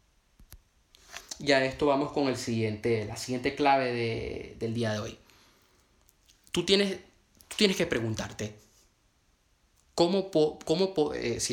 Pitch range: 105-135 Hz